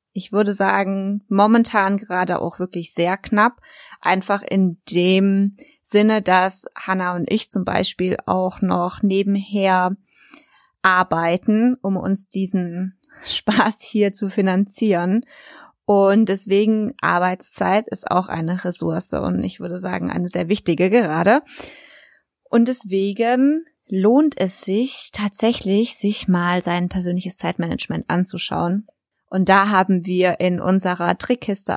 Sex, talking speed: female, 120 wpm